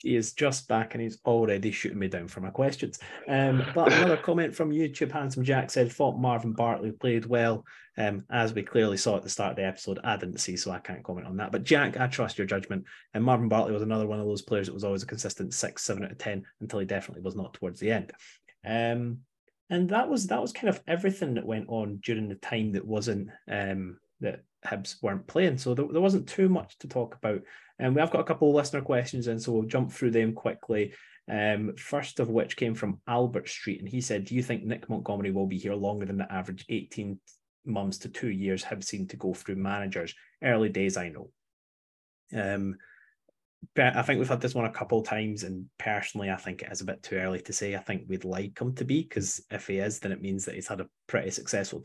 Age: 30-49